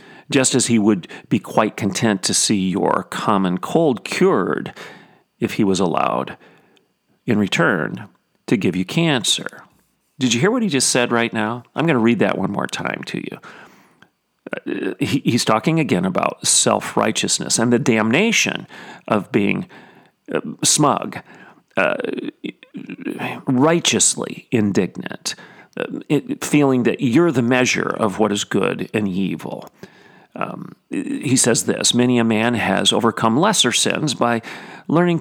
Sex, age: male, 40-59